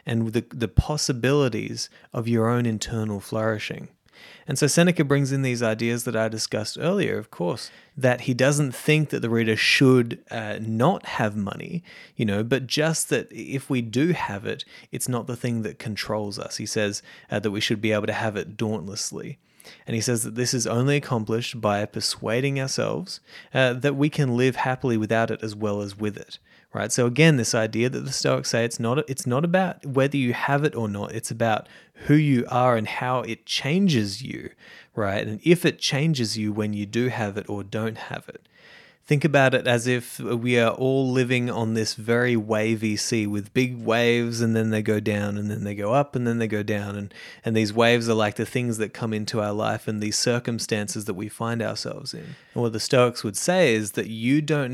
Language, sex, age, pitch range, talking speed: English, male, 20-39, 110-135 Hz, 215 wpm